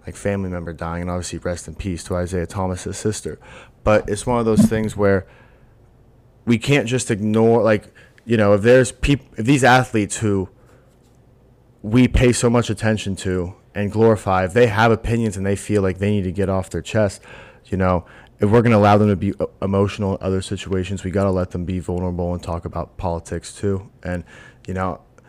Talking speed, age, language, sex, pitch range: 205 wpm, 20-39, English, male, 90-115 Hz